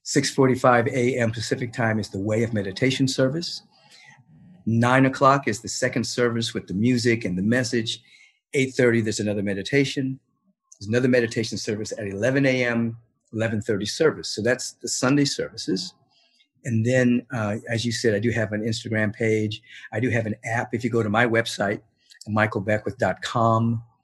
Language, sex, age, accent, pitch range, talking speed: English, male, 50-69, American, 105-130 Hz, 160 wpm